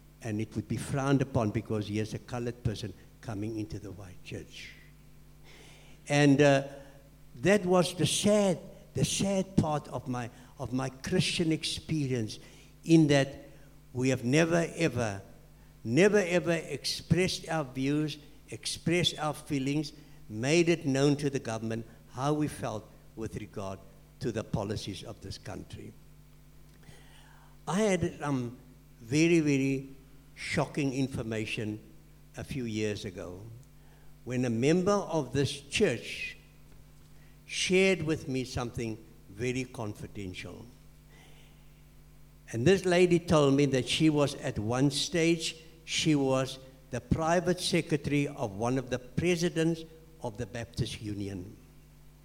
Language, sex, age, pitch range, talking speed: English, male, 60-79, 120-160 Hz, 125 wpm